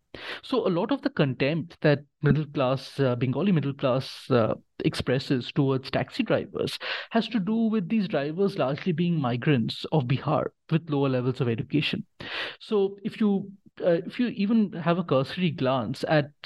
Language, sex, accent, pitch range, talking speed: English, male, Indian, 135-200 Hz, 170 wpm